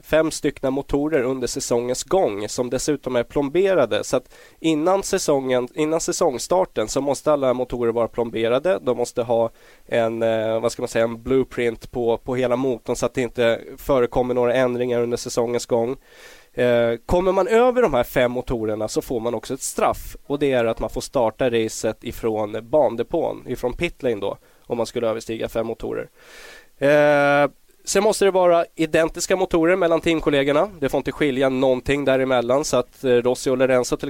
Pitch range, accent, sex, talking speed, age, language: 120-150 Hz, native, male, 175 wpm, 20-39, Swedish